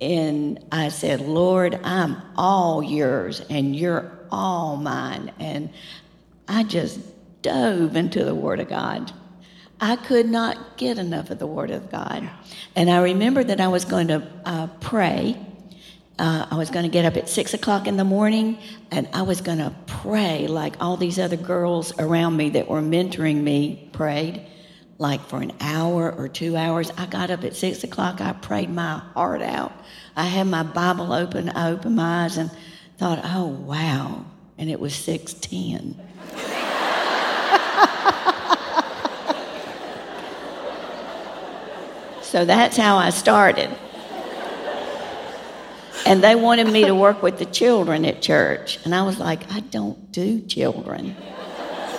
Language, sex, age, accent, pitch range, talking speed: English, female, 60-79, American, 160-195 Hz, 150 wpm